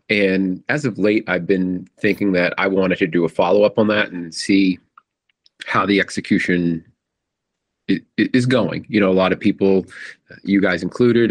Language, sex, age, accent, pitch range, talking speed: English, male, 30-49, American, 90-115 Hz, 170 wpm